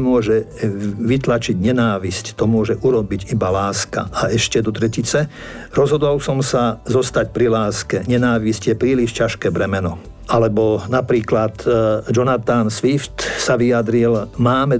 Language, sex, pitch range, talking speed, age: Slovak, male, 105-120 Hz, 120 wpm, 50-69